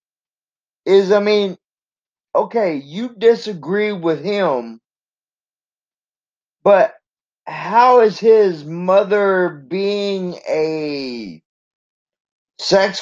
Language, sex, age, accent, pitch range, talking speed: English, male, 20-39, American, 175-245 Hz, 75 wpm